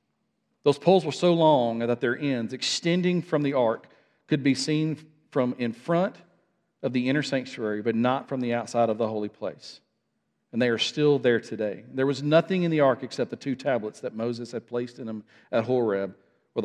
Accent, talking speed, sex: American, 200 wpm, male